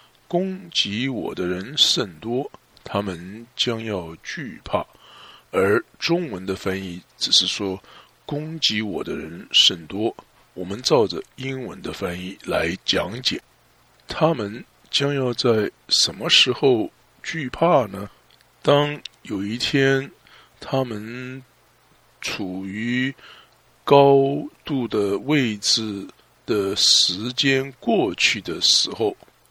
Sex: male